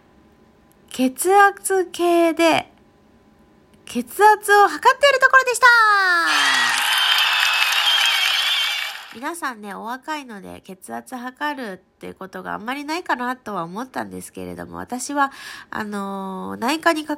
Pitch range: 195-330 Hz